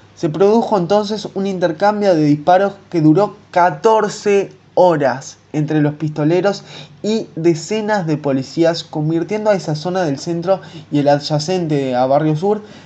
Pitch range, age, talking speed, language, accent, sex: 145-190 Hz, 20-39, 140 wpm, Spanish, Argentinian, male